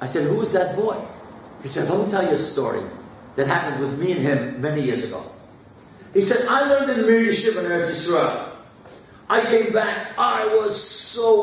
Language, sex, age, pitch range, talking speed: English, male, 50-69, 150-215 Hz, 200 wpm